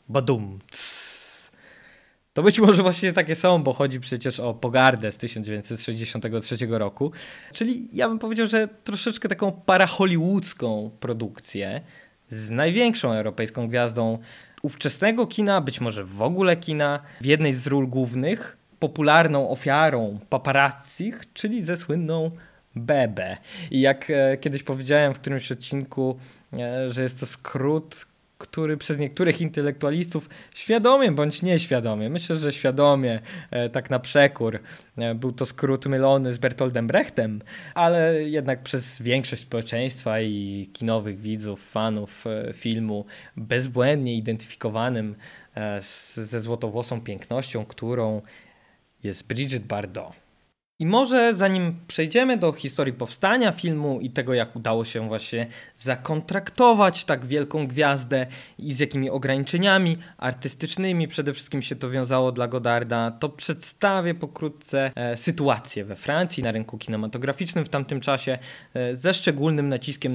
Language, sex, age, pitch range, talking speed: Polish, male, 20-39, 115-160 Hz, 120 wpm